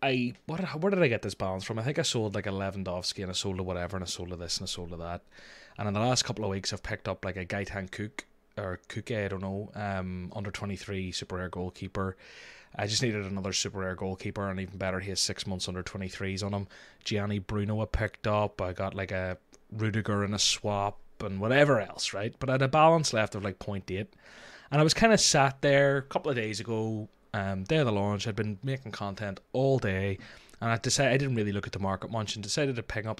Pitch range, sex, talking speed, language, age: 100-115 Hz, male, 255 wpm, English, 20-39